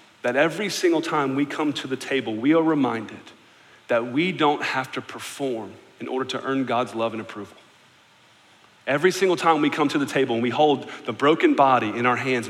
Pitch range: 125-195 Hz